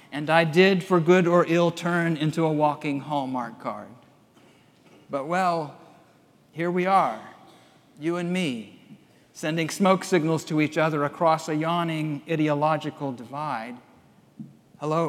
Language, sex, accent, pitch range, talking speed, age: English, male, American, 135-165 Hz, 130 wpm, 50-69